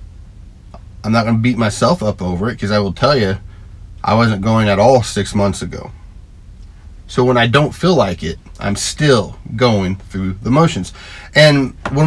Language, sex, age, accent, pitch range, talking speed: English, male, 40-59, American, 95-120 Hz, 185 wpm